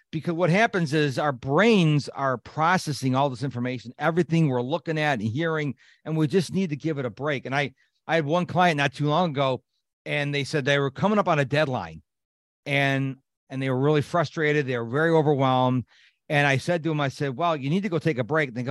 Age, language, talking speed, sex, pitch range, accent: 40-59, English, 235 wpm, male, 130-175 Hz, American